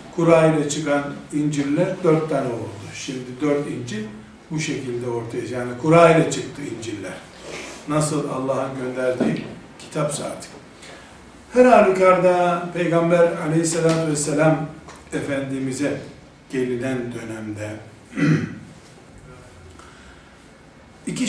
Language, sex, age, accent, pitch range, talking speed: Turkish, male, 60-79, native, 135-180 Hz, 85 wpm